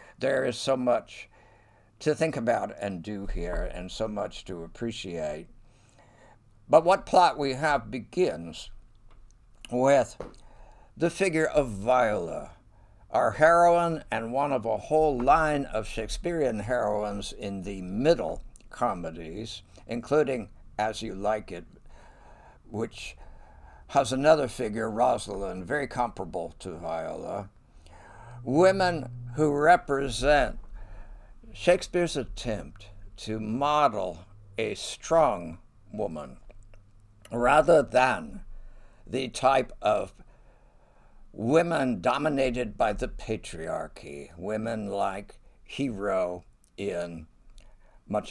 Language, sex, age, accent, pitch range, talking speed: English, male, 60-79, American, 100-135 Hz, 100 wpm